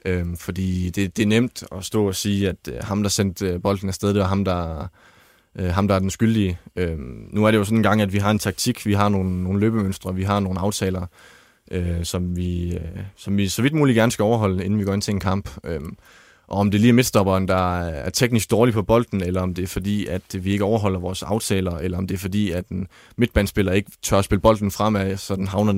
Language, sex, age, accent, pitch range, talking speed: Danish, male, 20-39, native, 95-105 Hz, 235 wpm